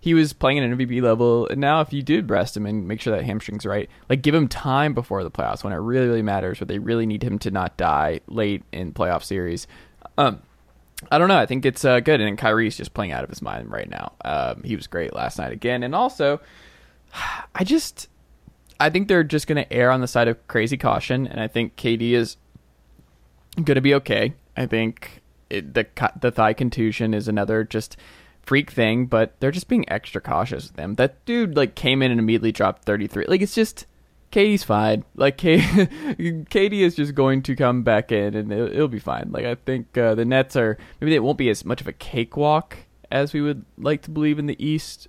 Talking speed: 225 wpm